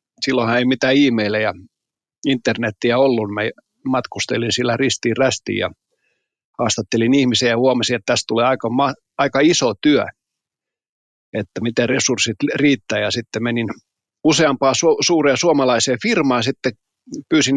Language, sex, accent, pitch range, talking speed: Finnish, male, native, 115-135 Hz, 140 wpm